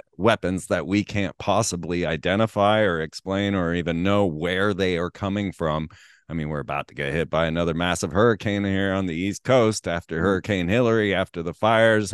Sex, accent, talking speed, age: male, American, 190 wpm, 30-49